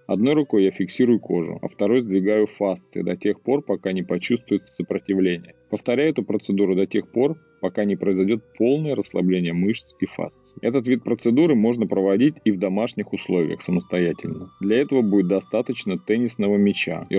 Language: Russian